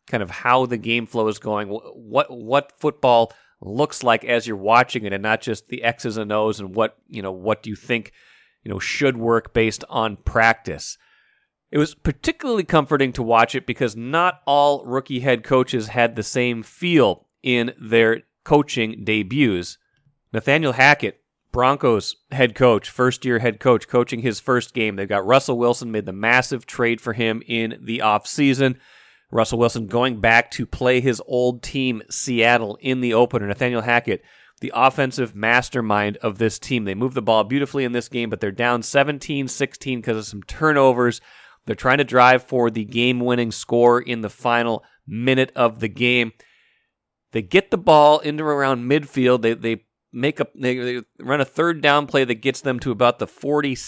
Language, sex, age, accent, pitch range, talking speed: English, male, 30-49, American, 115-135 Hz, 180 wpm